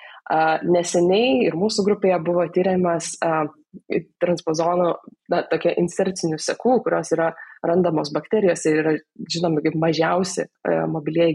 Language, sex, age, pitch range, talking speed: English, female, 20-39, 155-185 Hz, 125 wpm